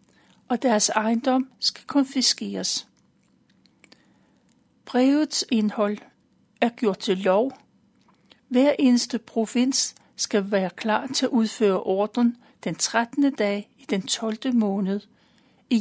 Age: 60-79